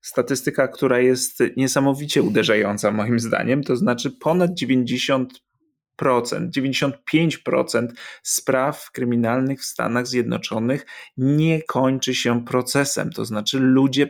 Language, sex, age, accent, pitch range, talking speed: Polish, male, 30-49, native, 125-155 Hz, 100 wpm